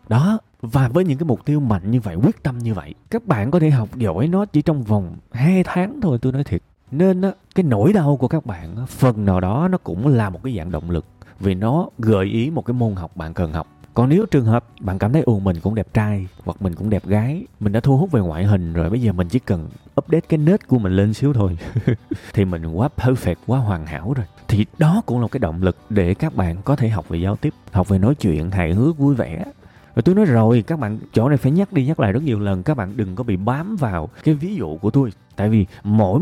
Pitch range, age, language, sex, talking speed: 100-145 Hz, 20-39, Vietnamese, male, 270 wpm